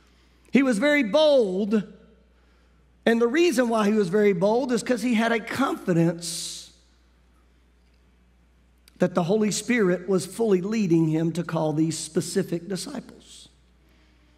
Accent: American